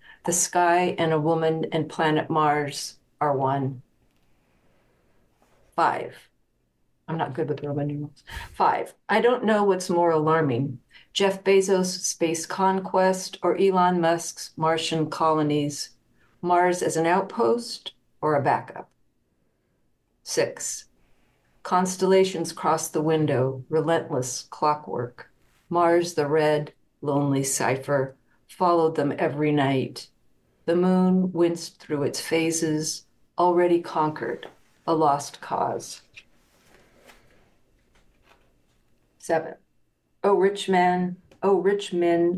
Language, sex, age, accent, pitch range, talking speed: English, female, 50-69, American, 150-185 Hz, 110 wpm